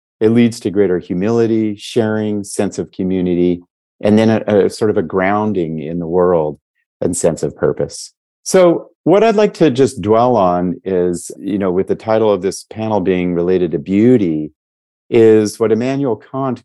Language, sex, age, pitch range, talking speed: English, male, 40-59, 90-120 Hz, 175 wpm